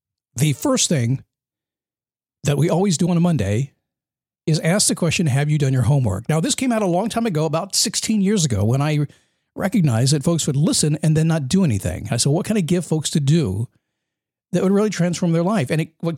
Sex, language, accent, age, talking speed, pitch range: male, English, American, 50-69, 225 wpm, 135-180 Hz